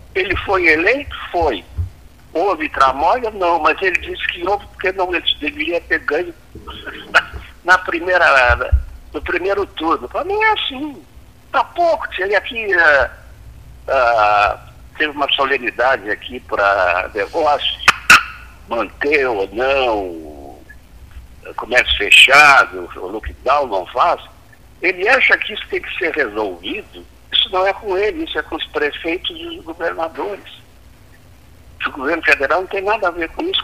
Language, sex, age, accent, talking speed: Portuguese, male, 60-79, Brazilian, 145 wpm